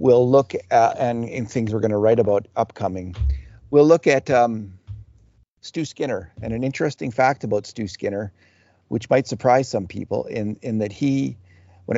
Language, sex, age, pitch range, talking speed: English, male, 50-69, 100-125 Hz, 175 wpm